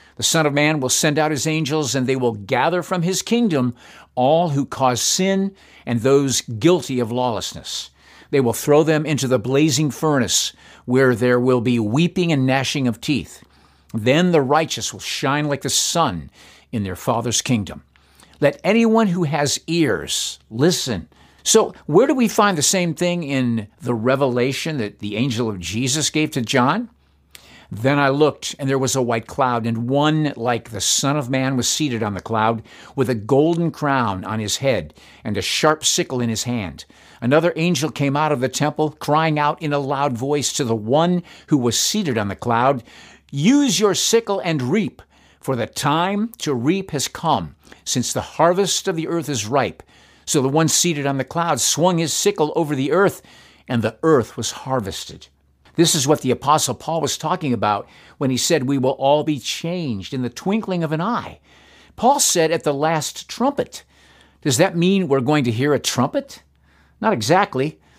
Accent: American